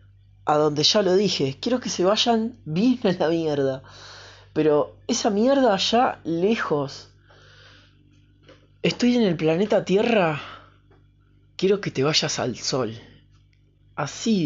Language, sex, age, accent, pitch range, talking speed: Spanish, male, 20-39, Argentinian, 110-155 Hz, 120 wpm